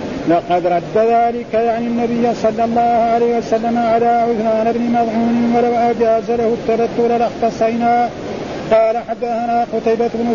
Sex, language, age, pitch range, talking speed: male, Arabic, 50-69, 225-240 Hz, 130 wpm